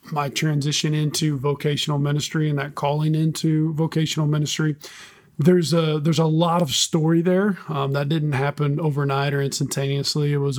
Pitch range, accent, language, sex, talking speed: 140-165 Hz, American, English, male, 160 wpm